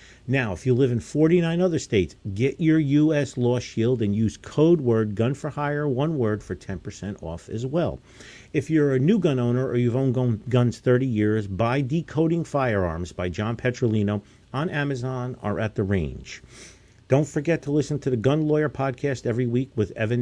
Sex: male